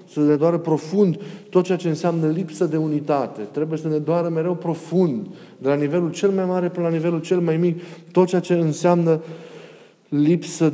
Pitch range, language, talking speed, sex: 140-175 Hz, Romanian, 190 wpm, male